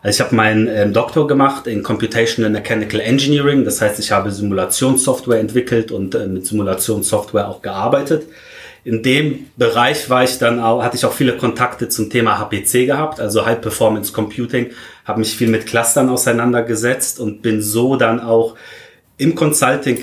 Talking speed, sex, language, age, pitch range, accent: 165 wpm, male, German, 30-49, 110-120 Hz, German